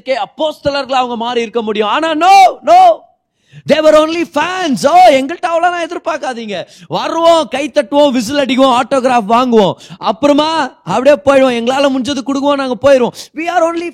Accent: native